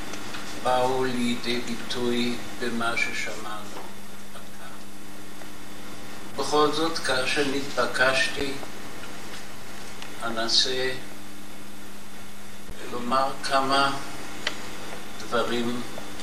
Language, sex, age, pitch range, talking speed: English, male, 60-79, 100-120 Hz, 50 wpm